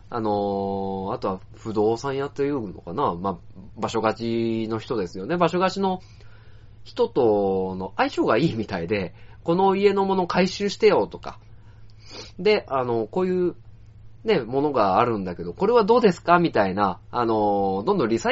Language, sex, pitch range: Japanese, male, 105-170 Hz